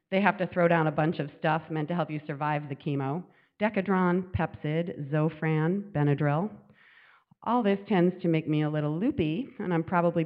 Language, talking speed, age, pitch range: English, 185 wpm, 40-59, 145-170 Hz